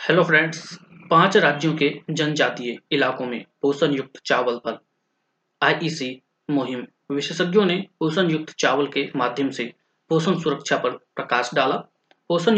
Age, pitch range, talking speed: 20-39, 130-160 Hz, 140 wpm